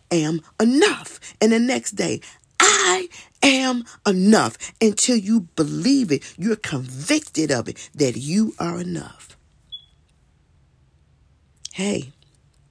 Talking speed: 105 wpm